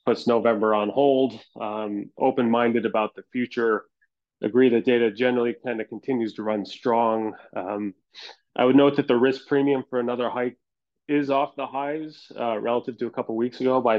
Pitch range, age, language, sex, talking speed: 110-130 Hz, 30-49, English, male, 185 wpm